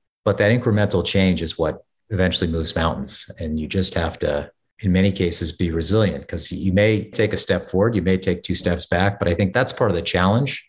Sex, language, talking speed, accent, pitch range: male, English, 225 wpm, American, 85-105 Hz